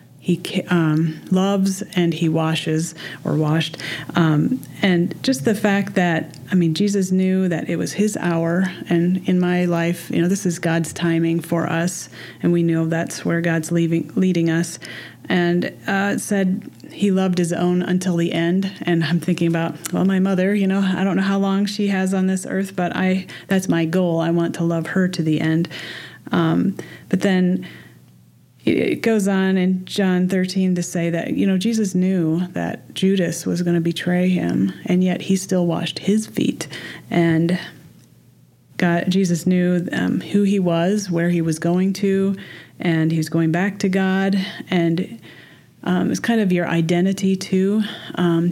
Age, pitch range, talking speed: 30-49, 165-190 Hz, 175 wpm